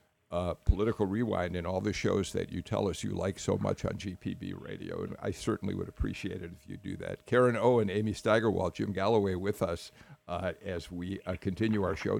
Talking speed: 210 wpm